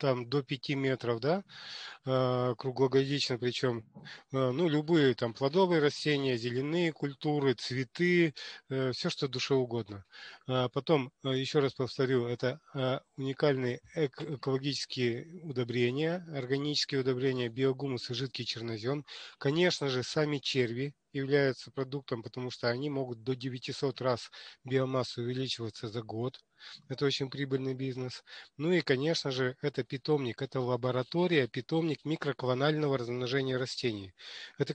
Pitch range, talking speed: 125-150 Hz, 115 wpm